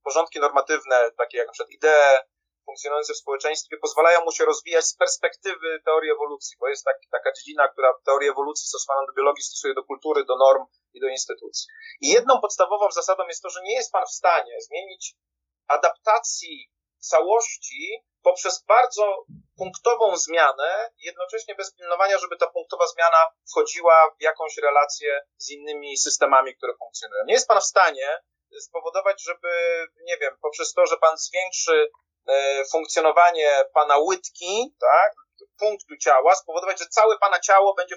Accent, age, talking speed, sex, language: native, 30-49, 155 wpm, male, Polish